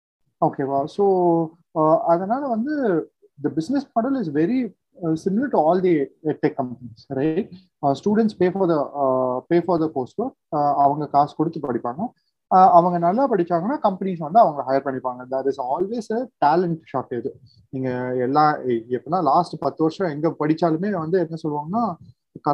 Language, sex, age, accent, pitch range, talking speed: Tamil, male, 30-49, native, 135-185 Hz, 135 wpm